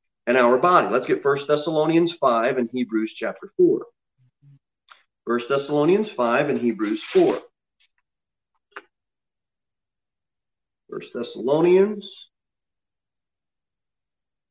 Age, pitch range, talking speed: 40-59, 125-175 Hz, 85 wpm